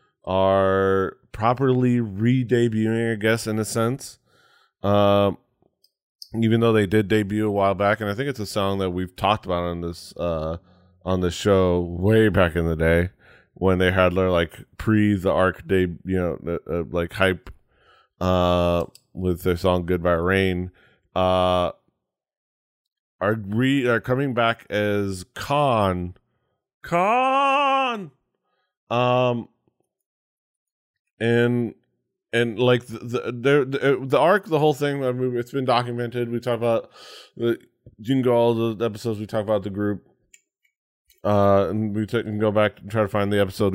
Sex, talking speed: male, 160 wpm